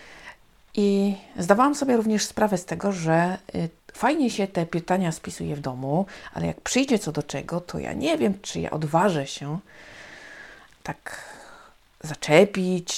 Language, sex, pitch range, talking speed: Polish, female, 155-205 Hz, 150 wpm